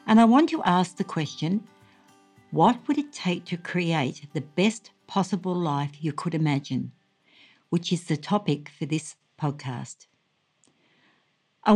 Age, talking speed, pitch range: 60-79, 145 wpm, 155-195 Hz